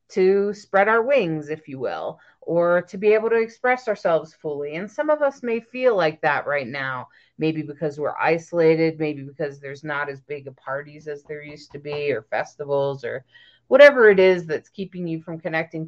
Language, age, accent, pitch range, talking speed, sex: English, 30-49, American, 155-230 Hz, 200 wpm, female